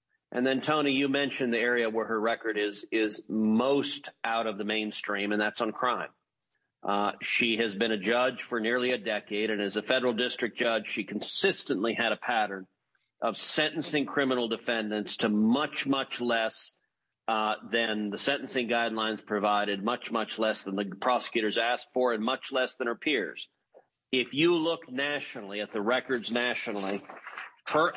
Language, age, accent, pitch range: English, 40-59, American, 110-140 Hz